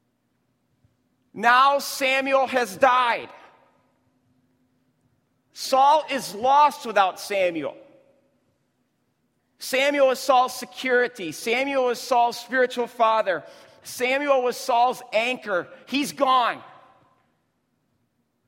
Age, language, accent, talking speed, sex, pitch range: 40-59, English, American, 80 wpm, male, 200-280 Hz